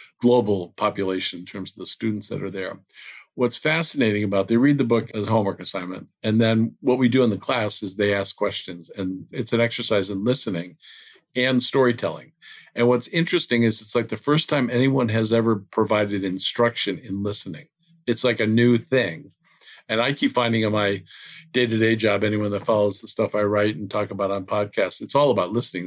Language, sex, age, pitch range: English, male, 50-69, 100-125 Hz